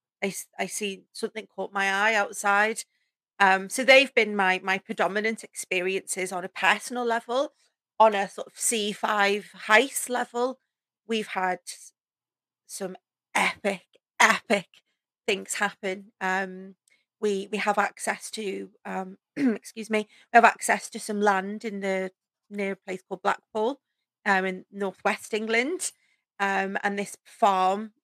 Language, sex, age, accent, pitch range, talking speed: English, female, 40-59, British, 190-215 Hz, 135 wpm